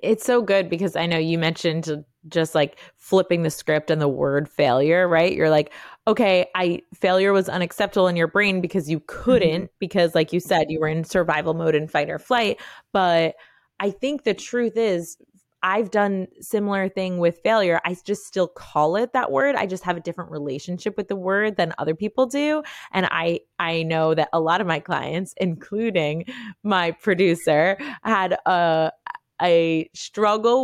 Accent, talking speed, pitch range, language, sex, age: American, 180 wpm, 165-205 Hz, English, female, 20-39